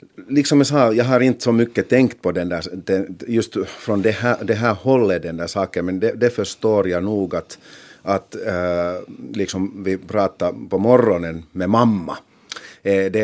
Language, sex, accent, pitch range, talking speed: Finnish, male, native, 90-115 Hz, 175 wpm